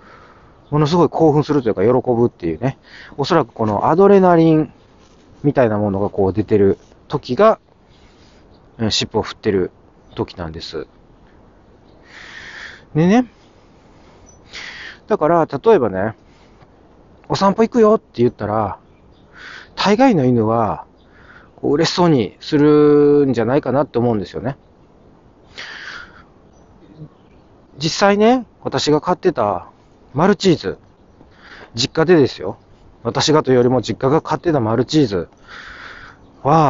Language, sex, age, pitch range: Japanese, male, 40-59, 120-200 Hz